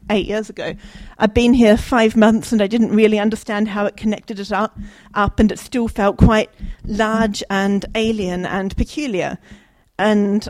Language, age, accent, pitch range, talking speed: English, 40-59, British, 195-225 Hz, 170 wpm